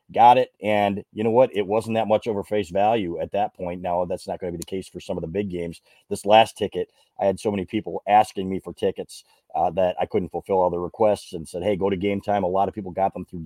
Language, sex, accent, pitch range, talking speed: English, male, American, 90-110 Hz, 285 wpm